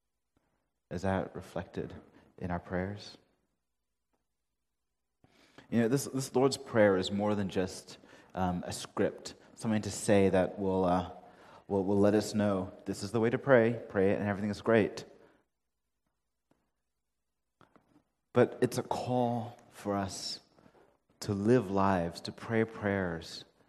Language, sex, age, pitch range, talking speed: English, male, 30-49, 85-105 Hz, 135 wpm